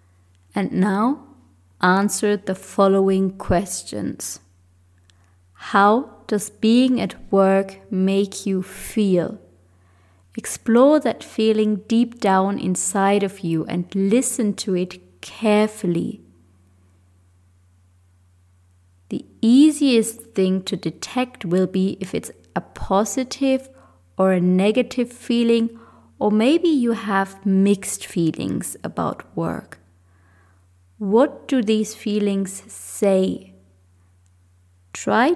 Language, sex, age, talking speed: English, female, 20-39, 95 wpm